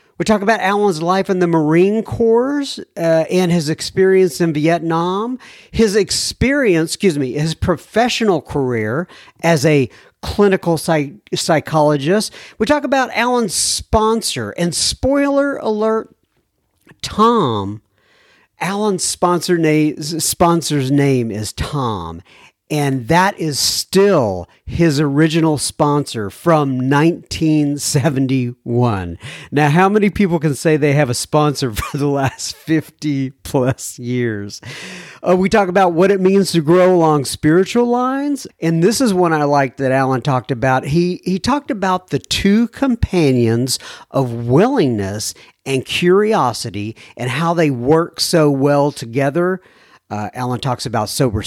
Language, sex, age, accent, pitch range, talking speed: English, male, 50-69, American, 140-200 Hz, 130 wpm